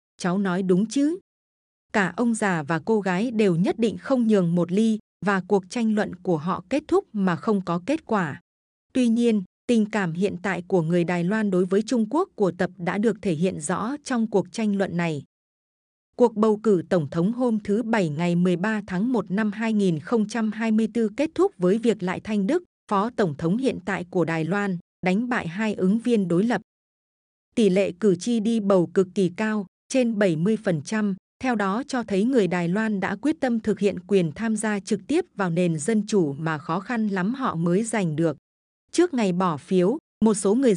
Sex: female